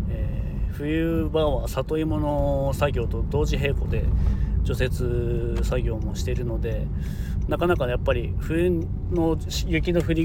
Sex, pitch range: male, 90-125 Hz